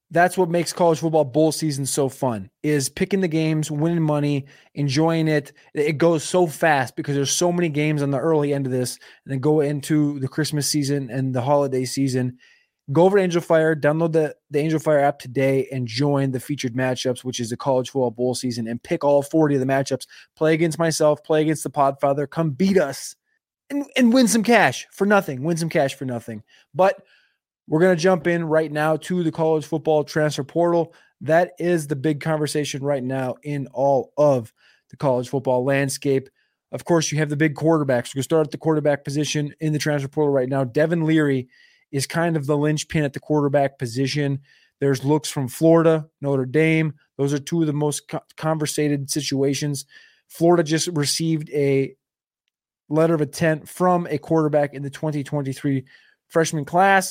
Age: 20-39